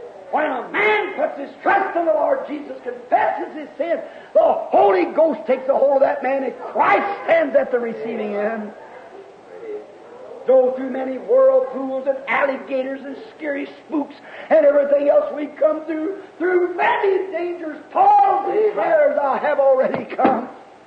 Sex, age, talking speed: male, 50-69, 150 wpm